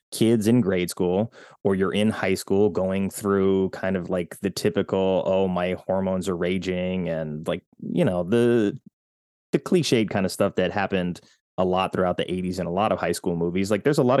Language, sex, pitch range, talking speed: English, male, 95-120 Hz, 205 wpm